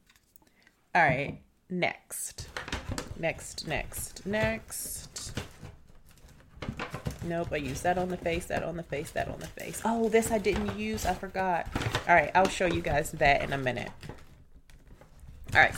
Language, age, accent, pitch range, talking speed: English, 30-49, American, 145-200 Hz, 150 wpm